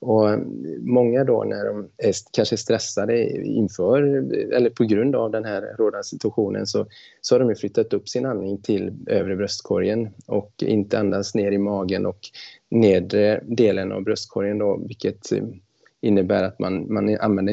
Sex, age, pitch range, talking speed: male, 20-39, 100-120 Hz, 160 wpm